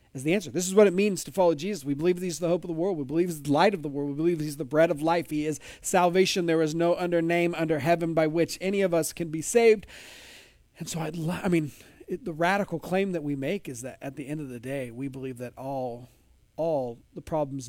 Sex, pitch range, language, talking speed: male, 125-170 Hz, English, 275 wpm